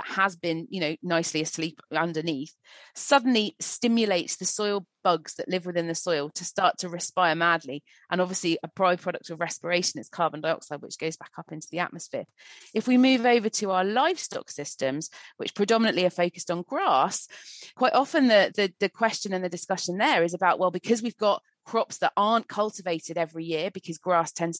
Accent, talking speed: British, 190 wpm